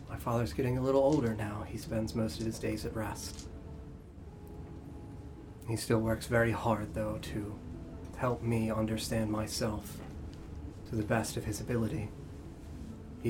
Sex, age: male, 30-49